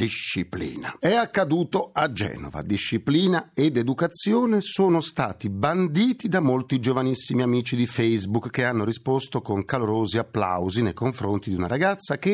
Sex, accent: male, native